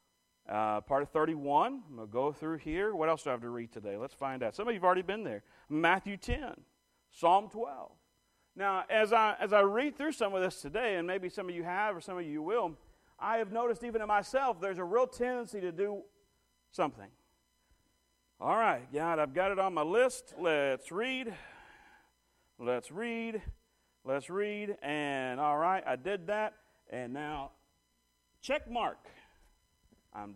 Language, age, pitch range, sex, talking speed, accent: English, 40-59, 175-255 Hz, male, 180 wpm, American